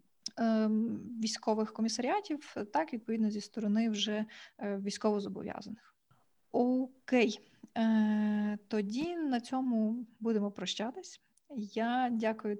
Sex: female